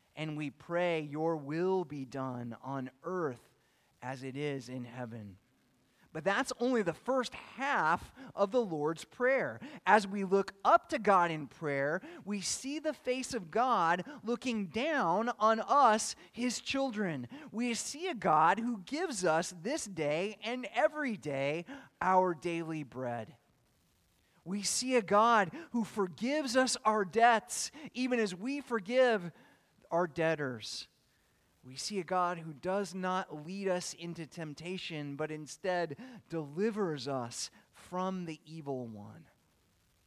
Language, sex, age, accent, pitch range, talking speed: English, male, 30-49, American, 140-215 Hz, 140 wpm